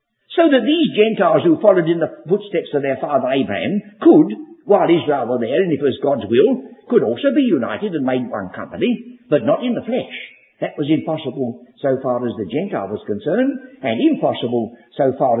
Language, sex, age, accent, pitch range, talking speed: English, male, 60-79, British, 150-235 Hz, 195 wpm